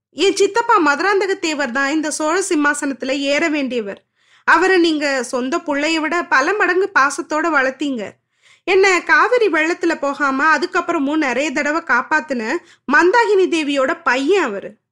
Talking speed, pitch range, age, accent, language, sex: 120 wpm, 270-370 Hz, 20-39, native, Tamil, female